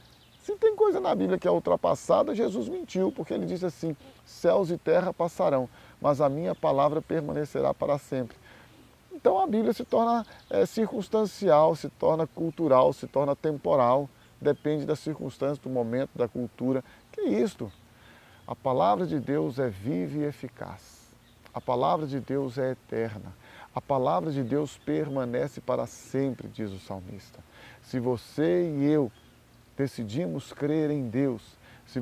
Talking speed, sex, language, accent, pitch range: 150 wpm, male, Portuguese, Brazilian, 120-150 Hz